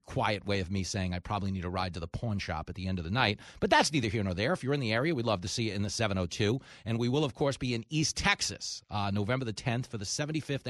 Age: 40-59